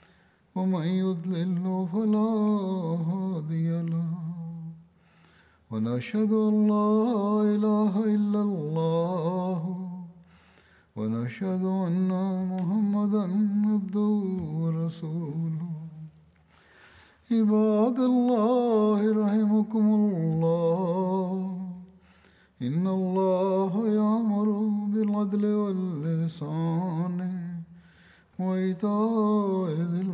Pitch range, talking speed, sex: 165-210 Hz, 50 wpm, male